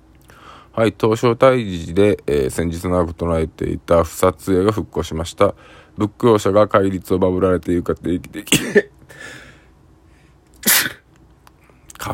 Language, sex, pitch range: Japanese, male, 80-100 Hz